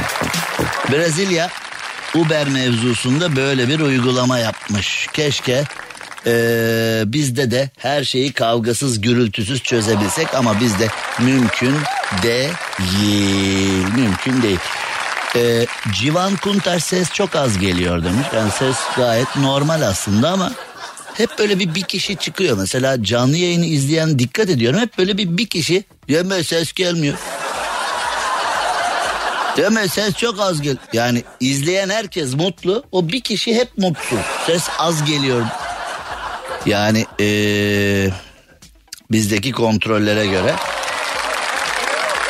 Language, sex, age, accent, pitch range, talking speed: Turkish, male, 60-79, native, 115-170 Hz, 110 wpm